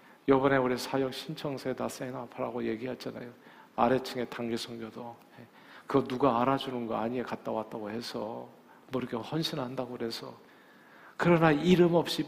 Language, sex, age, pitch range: Korean, male, 40-59, 120-155 Hz